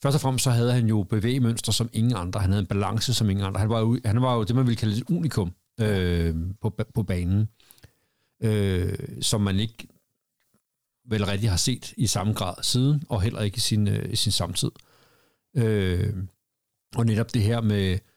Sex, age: male, 60-79